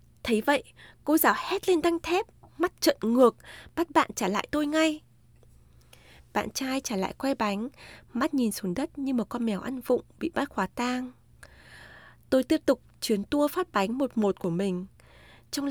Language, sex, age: Vietnamese, female, 20-39